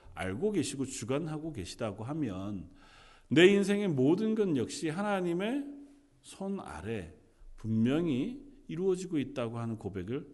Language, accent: Korean, native